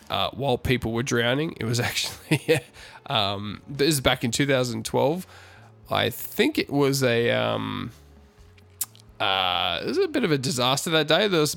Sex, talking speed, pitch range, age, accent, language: male, 170 wpm, 115-160 Hz, 20-39, Australian, English